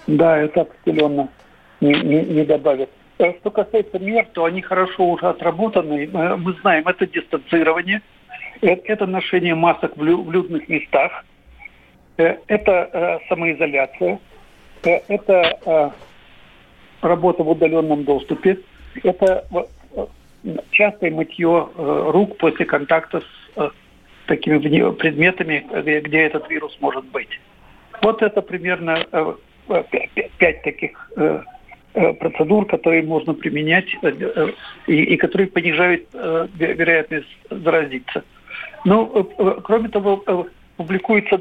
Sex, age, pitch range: male, 60-79, 155-185 Hz